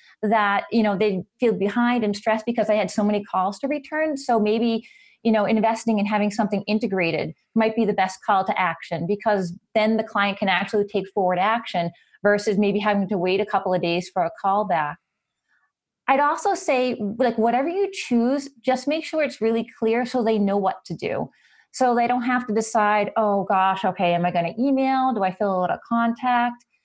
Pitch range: 205-250 Hz